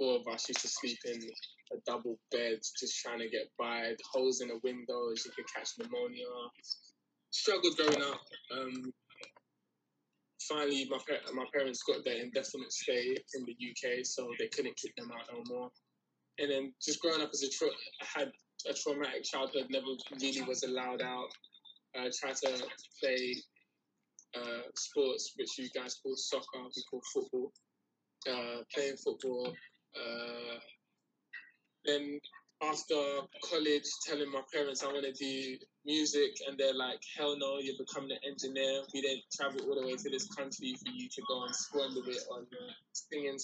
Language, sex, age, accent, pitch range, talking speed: English, male, 20-39, British, 130-160 Hz, 165 wpm